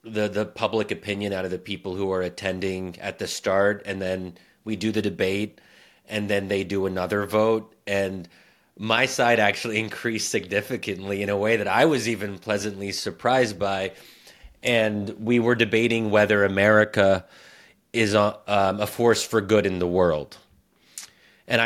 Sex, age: male, 30-49